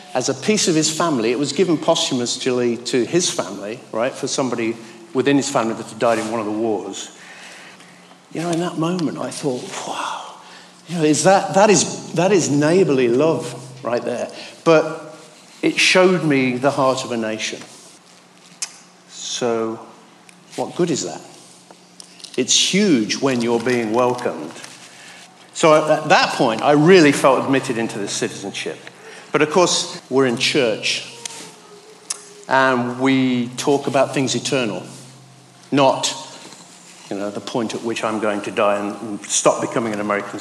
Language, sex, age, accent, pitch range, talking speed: English, male, 50-69, British, 120-170 Hz, 155 wpm